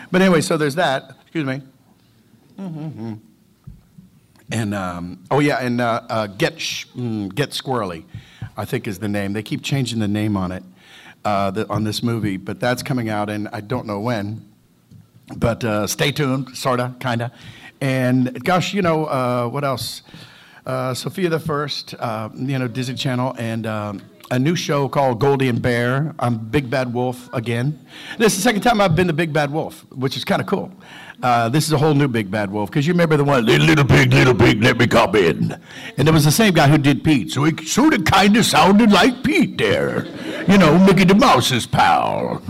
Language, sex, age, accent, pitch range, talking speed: English, male, 50-69, American, 115-155 Hz, 205 wpm